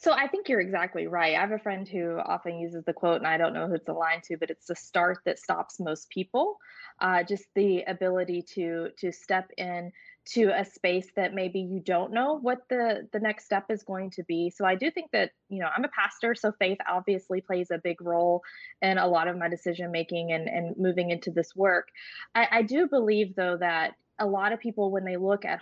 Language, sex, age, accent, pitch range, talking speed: English, female, 20-39, American, 180-215 Hz, 235 wpm